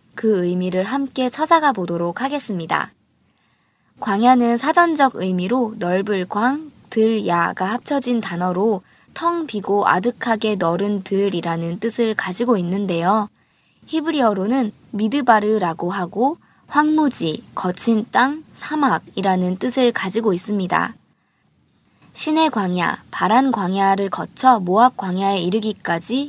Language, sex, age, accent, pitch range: Korean, male, 20-39, native, 185-245 Hz